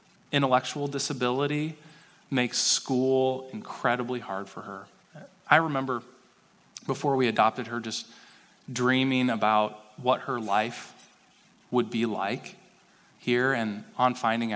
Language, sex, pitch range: English, male, 110-135 Hz